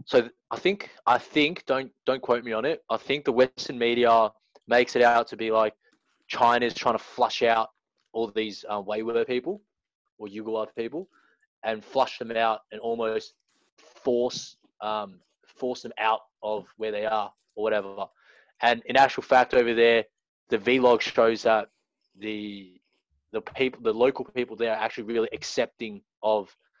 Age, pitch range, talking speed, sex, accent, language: 20-39, 105-120 Hz, 165 wpm, male, Australian, English